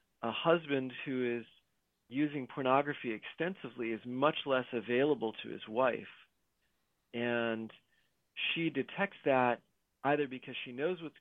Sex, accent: male, American